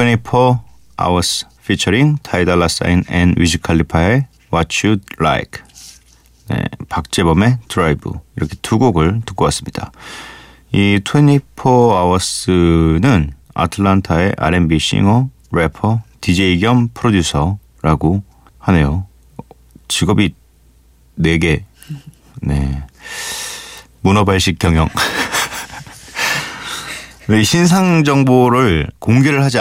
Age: 40-59